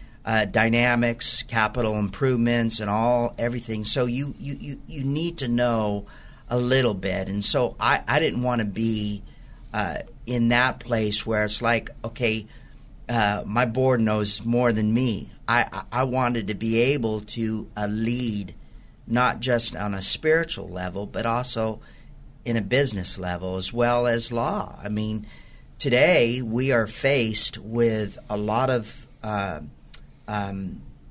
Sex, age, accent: male, 50-69, American